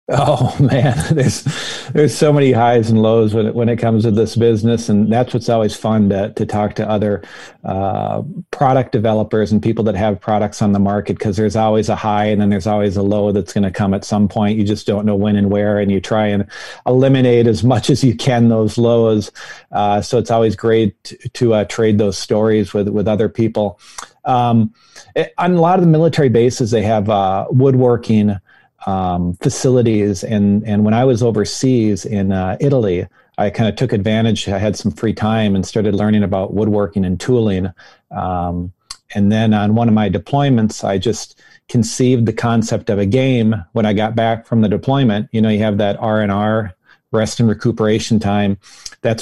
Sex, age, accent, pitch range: male, 40-59, American, 105-120 Hz